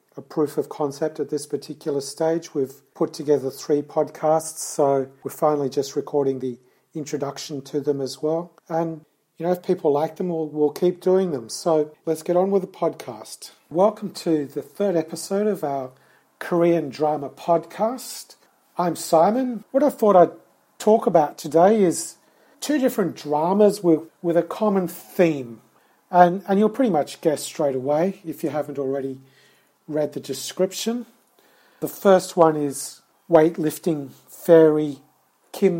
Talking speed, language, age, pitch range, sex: 155 wpm, English, 40-59, 145-180 Hz, male